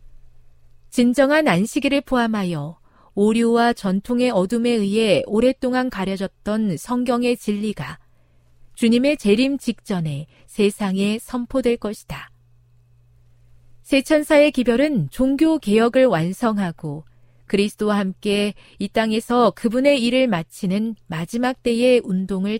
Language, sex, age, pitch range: Korean, female, 40-59, 165-250 Hz